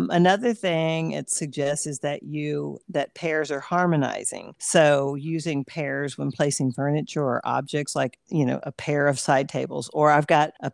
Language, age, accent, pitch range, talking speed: English, 50-69, American, 140-170 Hz, 175 wpm